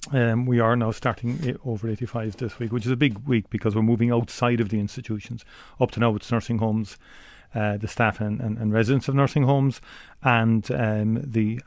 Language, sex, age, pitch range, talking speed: English, male, 40-59, 105-120 Hz, 205 wpm